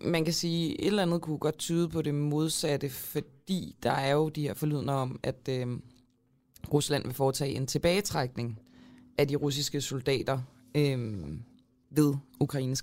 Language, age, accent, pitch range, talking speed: Danish, 20-39, native, 125-160 Hz, 165 wpm